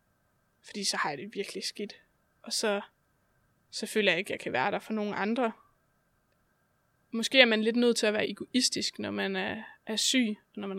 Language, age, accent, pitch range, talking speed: Danish, 20-39, native, 200-230 Hz, 210 wpm